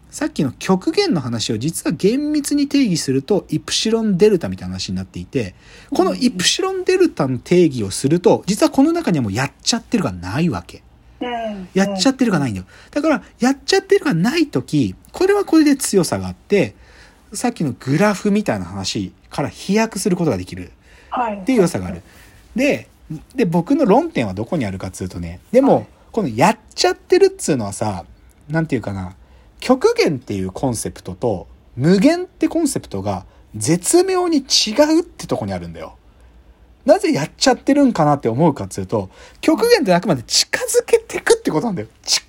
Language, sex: Japanese, male